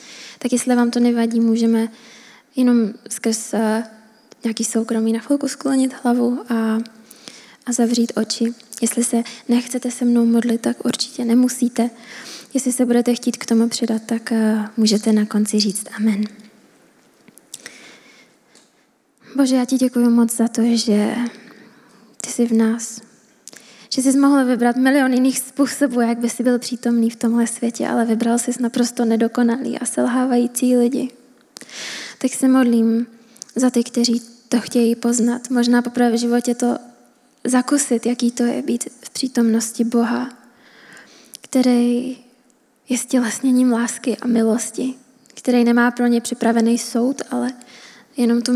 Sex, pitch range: female, 230-250 Hz